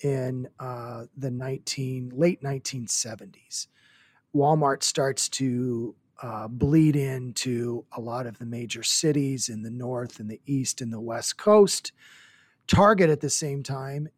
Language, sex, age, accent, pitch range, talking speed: English, male, 40-59, American, 120-145 Hz, 140 wpm